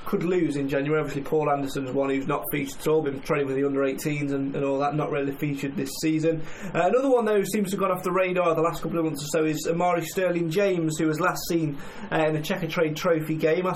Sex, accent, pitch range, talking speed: male, British, 155-175 Hz, 280 wpm